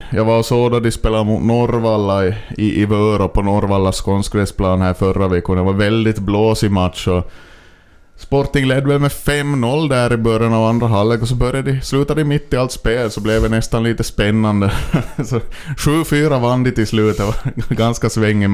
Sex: male